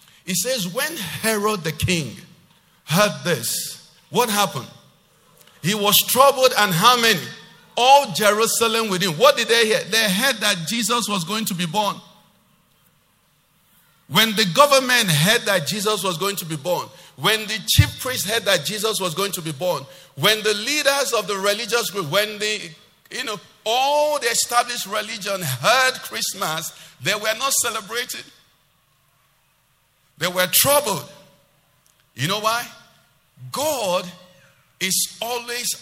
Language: English